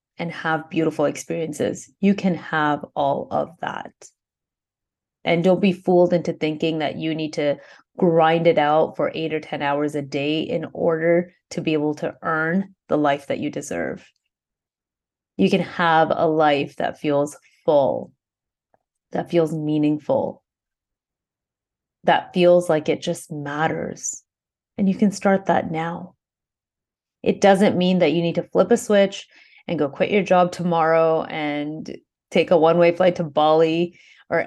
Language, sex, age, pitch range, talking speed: English, female, 30-49, 160-185 Hz, 155 wpm